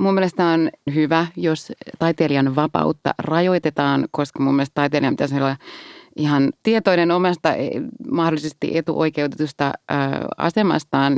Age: 30-49